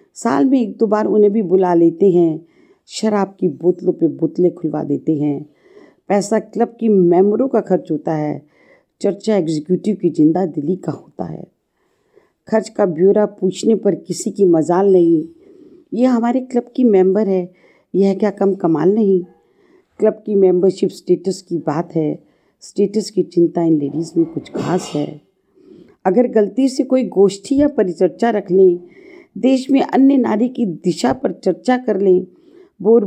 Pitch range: 175-240 Hz